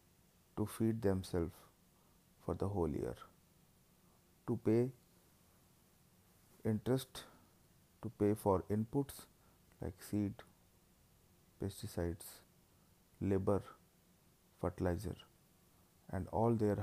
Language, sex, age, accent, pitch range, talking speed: English, male, 30-49, Indian, 90-115 Hz, 80 wpm